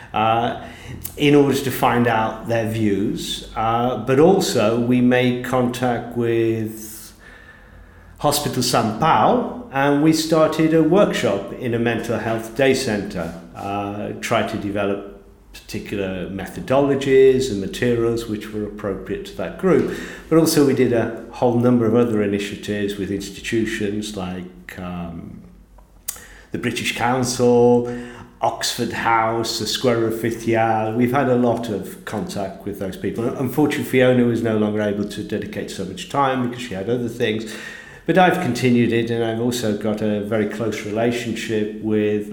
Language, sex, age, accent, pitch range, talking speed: English, male, 50-69, British, 105-125 Hz, 145 wpm